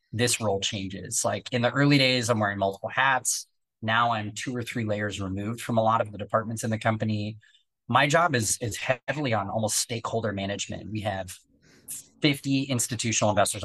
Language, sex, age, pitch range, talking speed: English, male, 20-39, 105-125 Hz, 185 wpm